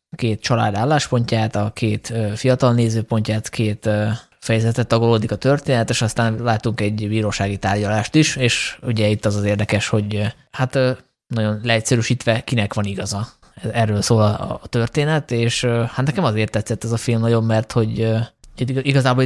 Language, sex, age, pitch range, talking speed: Hungarian, male, 20-39, 110-125 Hz, 150 wpm